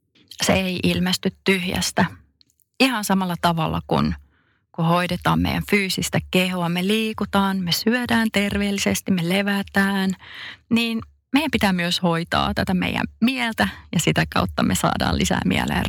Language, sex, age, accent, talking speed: Finnish, female, 30-49, native, 130 wpm